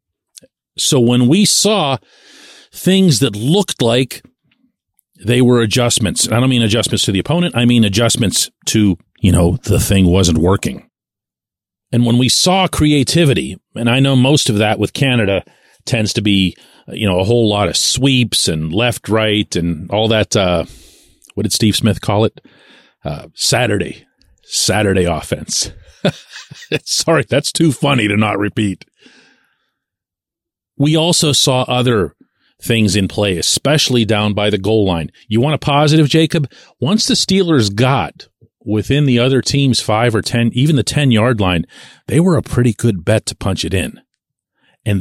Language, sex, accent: English, male, American